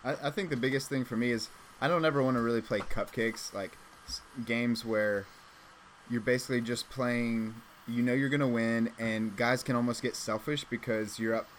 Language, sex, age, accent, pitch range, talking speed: English, male, 20-39, American, 110-125 Hz, 195 wpm